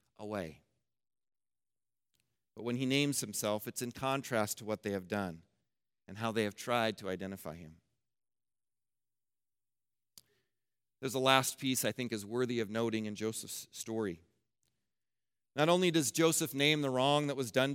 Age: 40-59